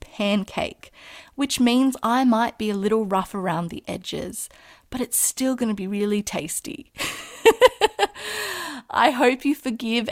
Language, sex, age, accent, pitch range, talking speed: English, female, 30-49, Australian, 180-220 Hz, 135 wpm